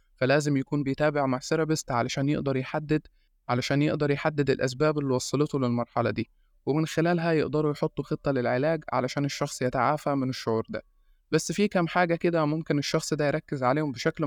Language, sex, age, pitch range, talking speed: Arabic, male, 20-39, 130-155 Hz, 165 wpm